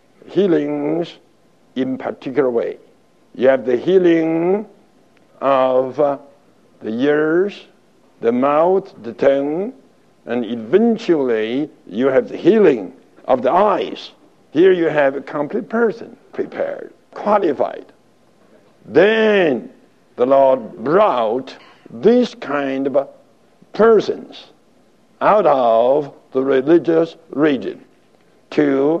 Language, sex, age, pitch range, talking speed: English, male, 60-79, 145-205 Hz, 95 wpm